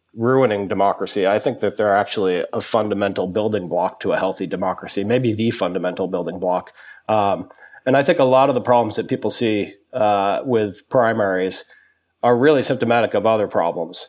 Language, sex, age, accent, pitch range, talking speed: English, male, 30-49, American, 100-120 Hz, 175 wpm